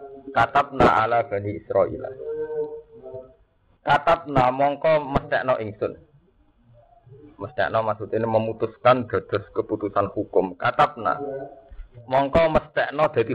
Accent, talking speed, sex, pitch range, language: native, 105 wpm, male, 115-155 Hz, Indonesian